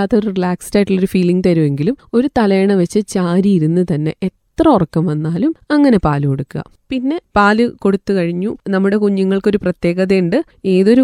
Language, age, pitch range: Malayalam, 30-49, 180-235 Hz